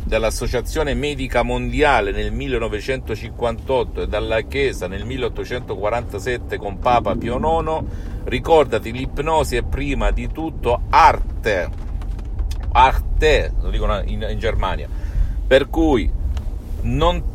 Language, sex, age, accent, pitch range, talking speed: Italian, male, 50-69, native, 95-130 Hz, 105 wpm